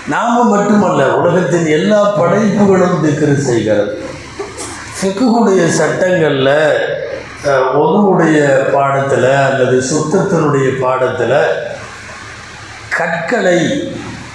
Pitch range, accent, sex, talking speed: 135-185 Hz, native, male, 65 wpm